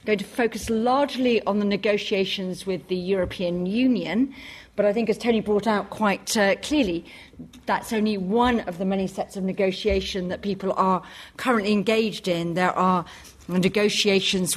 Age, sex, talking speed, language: 40-59, female, 160 wpm, English